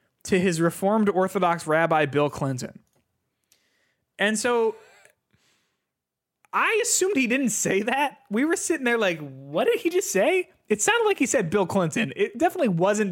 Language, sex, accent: English, male, American